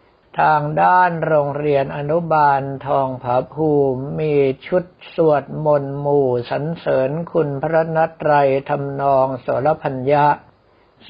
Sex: male